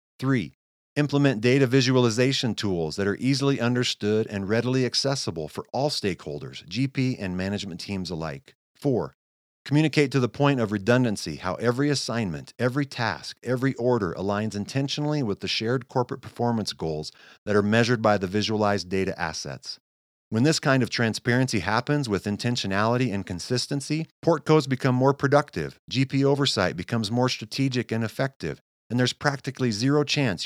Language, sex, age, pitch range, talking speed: English, male, 50-69, 100-135 Hz, 150 wpm